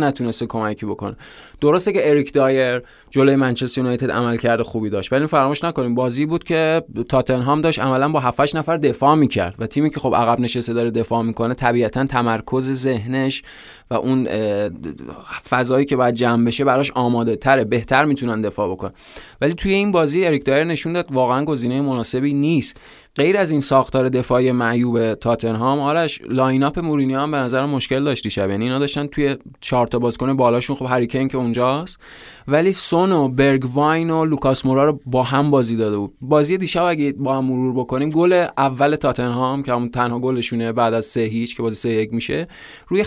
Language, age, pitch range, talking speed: Persian, 20-39, 120-145 Hz, 185 wpm